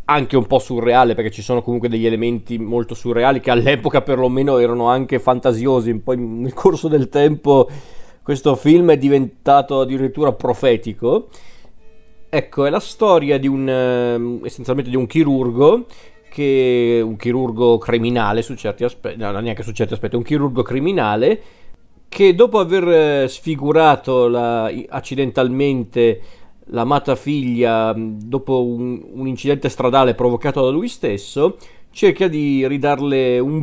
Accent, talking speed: native, 135 wpm